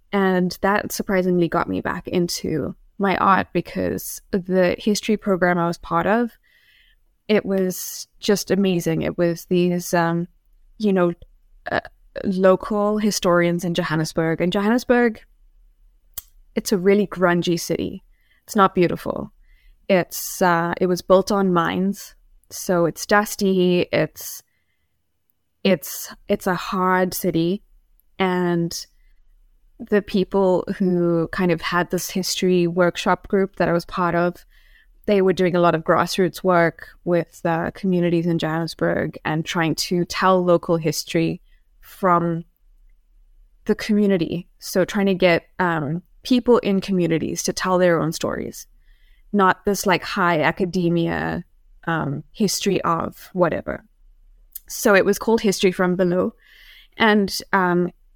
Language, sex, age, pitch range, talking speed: English, female, 20-39, 170-195 Hz, 130 wpm